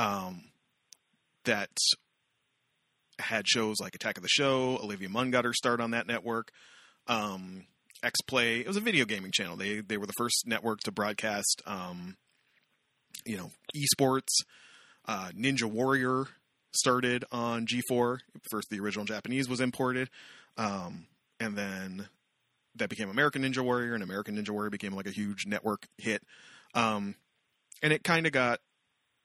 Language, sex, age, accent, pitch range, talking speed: English, male, 30-49, American, 105-130 Hz, 150 wpm